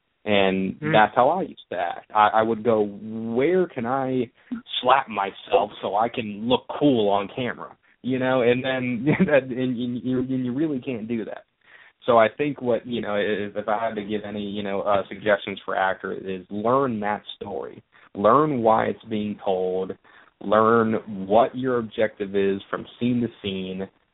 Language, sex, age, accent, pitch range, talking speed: English, male, 30-49, American, 100-115 Hz, 170 wpm